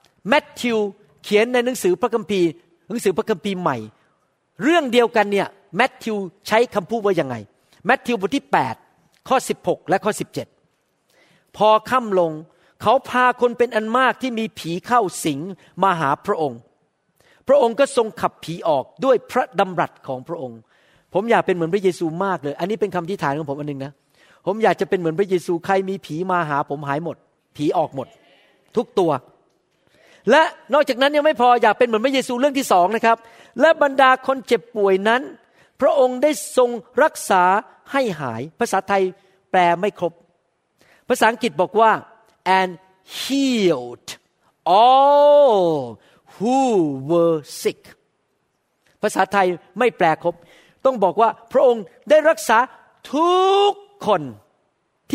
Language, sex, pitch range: Thai, male, 170-245 Hz